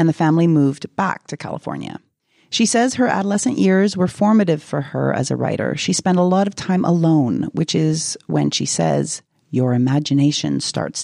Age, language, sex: 30-49, English, female